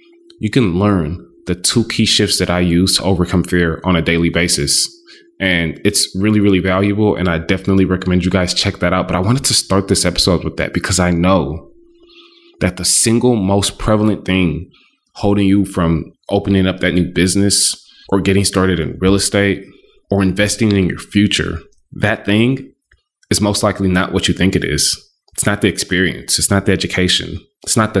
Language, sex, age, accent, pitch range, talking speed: English, male, 20-39, American, 90-100 Hz, 195 wpm